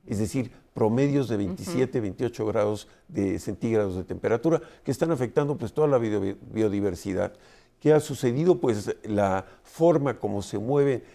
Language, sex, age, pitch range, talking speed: Spanish, male, 50-69, 110-150 Hz, 145 wpm